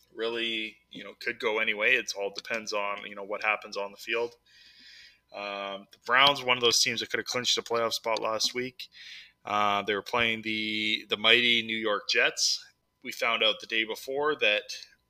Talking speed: 205 wpm